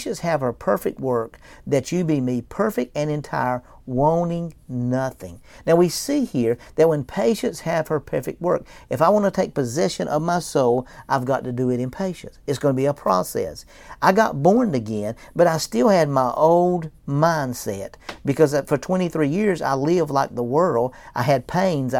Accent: American